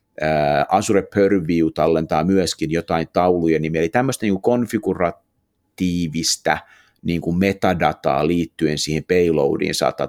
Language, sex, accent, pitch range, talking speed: Finnish, male, native, 80-100 Hz, 115 wpm